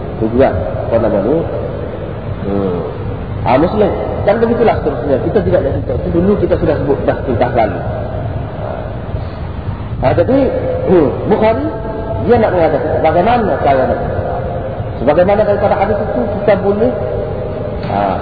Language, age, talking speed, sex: Malay, 50-69, 130 wpm, male